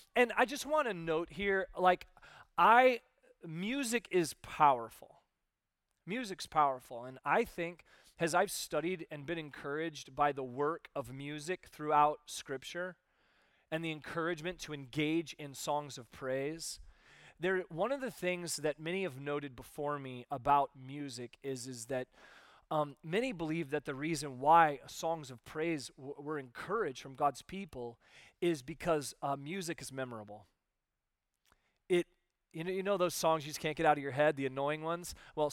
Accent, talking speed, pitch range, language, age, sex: American, 160 wpm, 135-170 Hz, English, 30-49, male